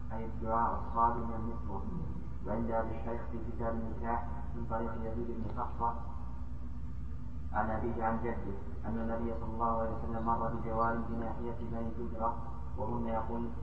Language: Arabic